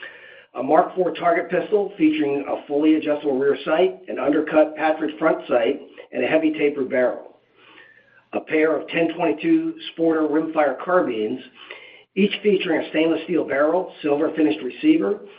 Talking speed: 145 wpm